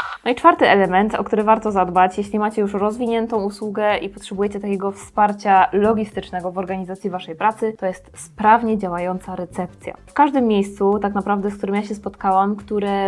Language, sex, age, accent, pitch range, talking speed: Polish, female, 20-39, native, 190-215 Hz, 175 wpm